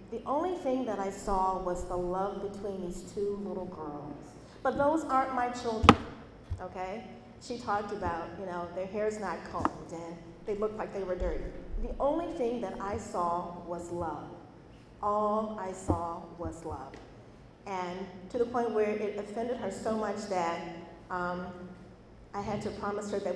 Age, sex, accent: 40-59, female, American